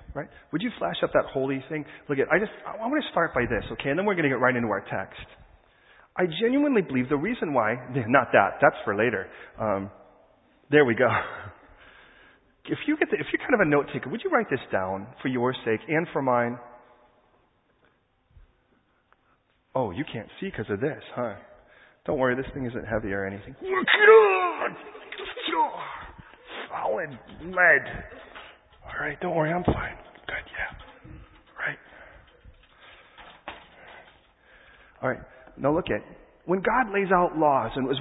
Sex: male